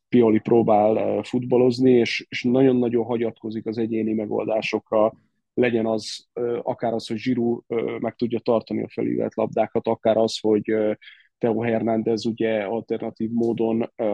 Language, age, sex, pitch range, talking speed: Hungarian, 20-39, male, 115-125 Hz, 125 wpm